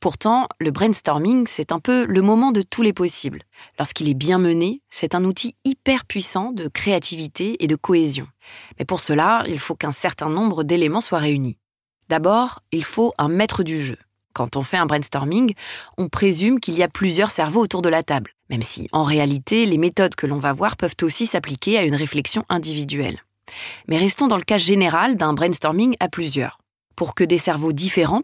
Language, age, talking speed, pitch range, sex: French, 20-39, 195 wpm, 150-205 Hz, female